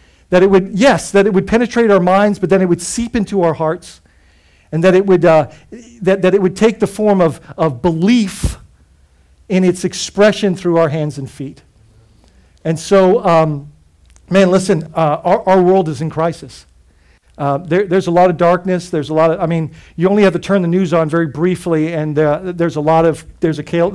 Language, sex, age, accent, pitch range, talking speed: English, male, 50-69, American, 155-195 Hz, 215 wpm